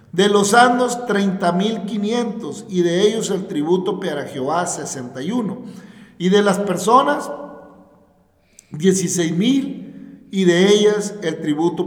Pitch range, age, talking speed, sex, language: 170-210 Hz, 50-69, 110 wpm, male, Spanish